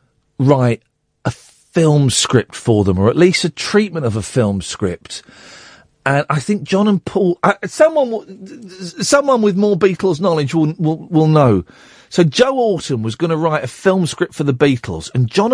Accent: British